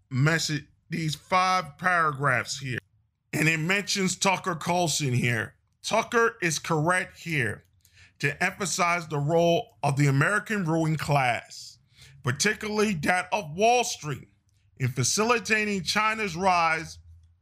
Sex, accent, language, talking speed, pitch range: male, American, English, 115 wpm, 140-210 Hz